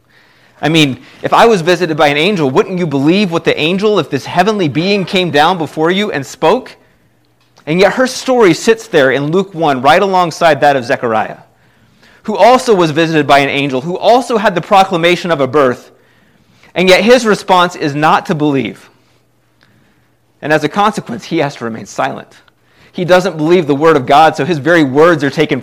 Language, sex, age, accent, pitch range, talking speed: English, male, 30-49, American, 145-195 Hz, 195 wpm